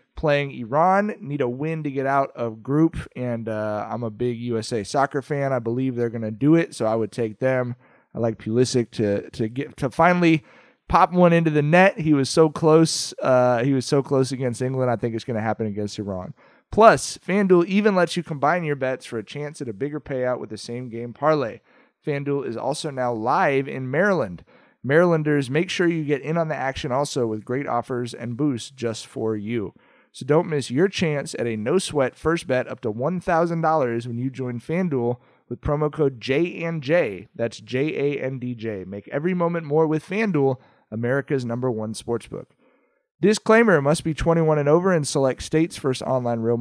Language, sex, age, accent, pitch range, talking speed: English, male, 30-49, American, 120-155 Hz, 195 wpm